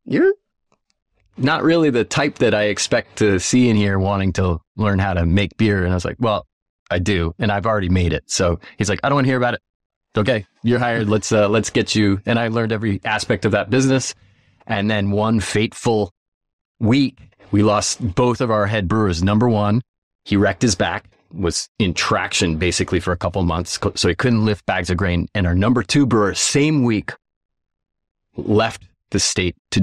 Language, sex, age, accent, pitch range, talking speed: English, male, 30-49, American, 95-115 Hz, 205 wpm